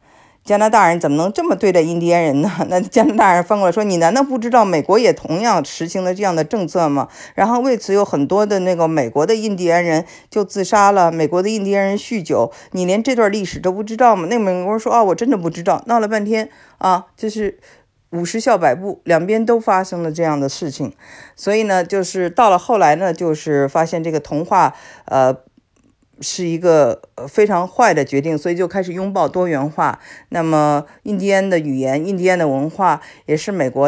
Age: 50-69